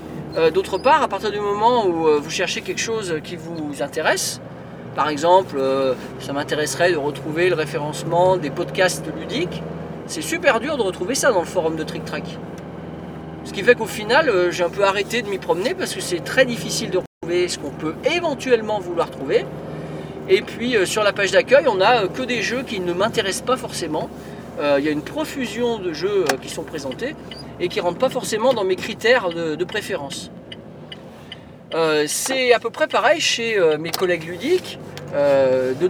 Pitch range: 165-240 Hz